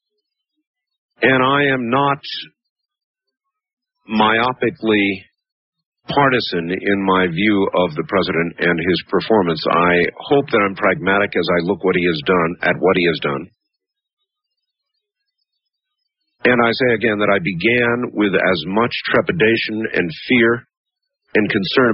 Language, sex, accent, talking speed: English, male, American, 130 wpm